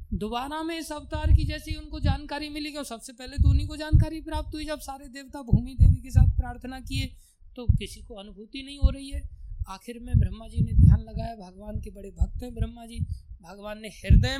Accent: native